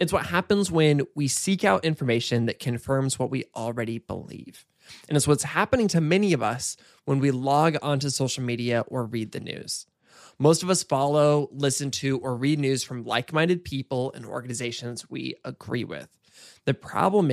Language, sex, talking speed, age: English, male, 175 wpm, 20-39